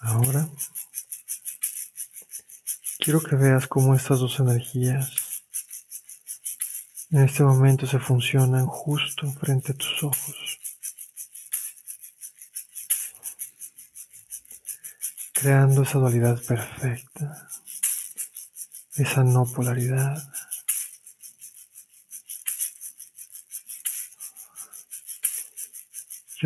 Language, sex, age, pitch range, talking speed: Spanish, male, 50-69, 130-150 Hz, 60 wpm